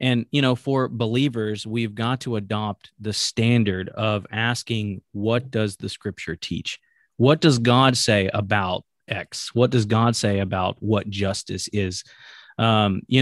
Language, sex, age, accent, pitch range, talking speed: English, male, 30-49, American, 105-130 Hz, 155 wpm